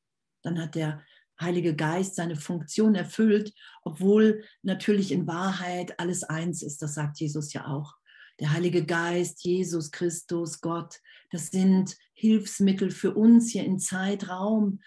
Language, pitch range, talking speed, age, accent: German, 155-190 Hz, 135 wpm, 50-69, German